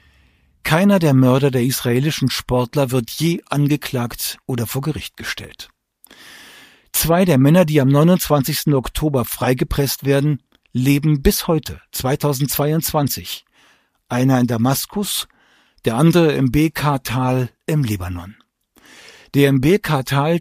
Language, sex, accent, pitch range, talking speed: German, male, German, 125-155 Hz, 110 wpm